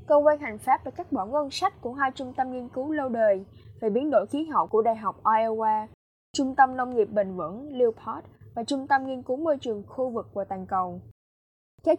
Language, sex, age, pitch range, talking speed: Vietnamese, female, 10-29, 215-270 Hz, 230 wpm